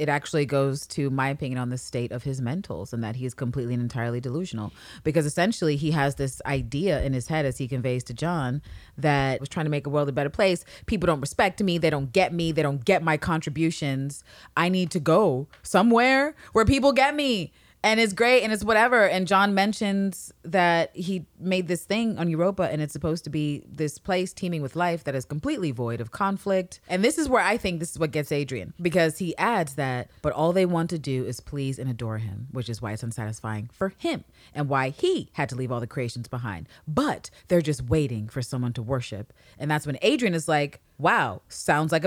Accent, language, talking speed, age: American, English, 225 wpm, 30-49